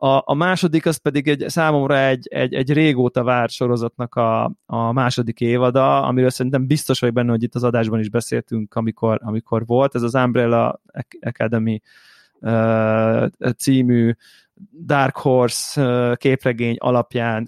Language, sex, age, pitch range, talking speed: Hungarian, male, 20-39, 120-145 Hz, 140 wpm